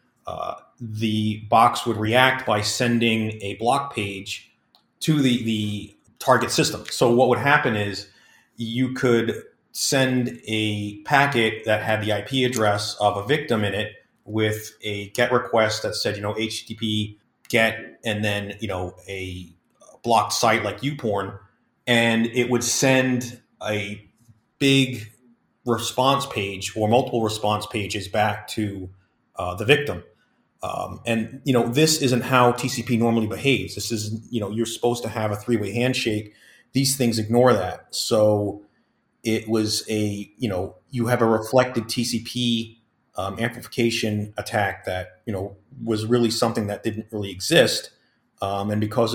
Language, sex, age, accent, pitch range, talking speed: English, male, 30-49, American, 105-120 Hz, 150 wpm